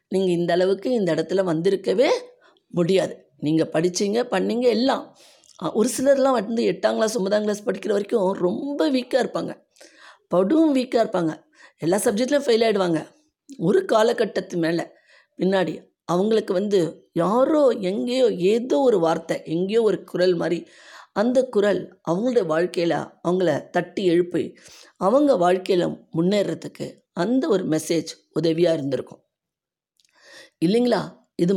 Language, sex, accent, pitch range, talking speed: Tamil, female, native, 175-250 Hz, 110 wpm